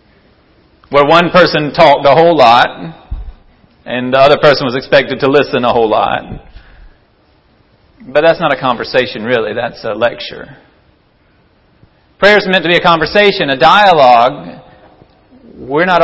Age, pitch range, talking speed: 40-59, 135-170 Hz, 140 wpm